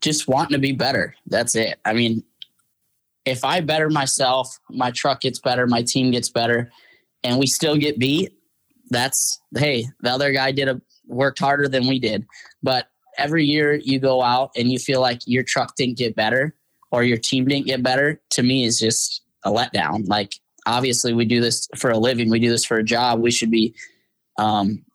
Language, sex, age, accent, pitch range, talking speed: English, male, 10-29, American, 115-140 Hz, 200 wpm